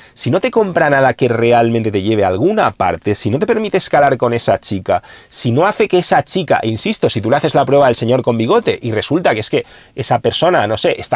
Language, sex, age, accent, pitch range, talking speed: English, male, 30-49, Spanish, 115-145 Hz, 255 wpm